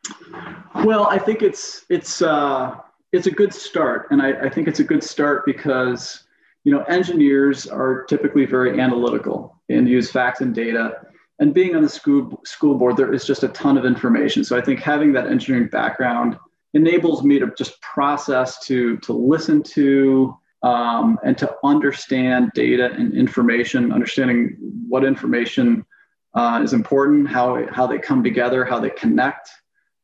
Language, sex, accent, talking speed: English, male, American, 165 wpm